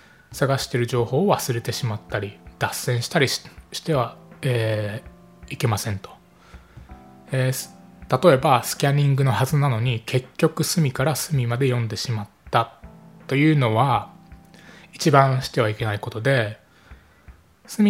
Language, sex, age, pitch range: Japanese, male, 20-39, 115-160 Hz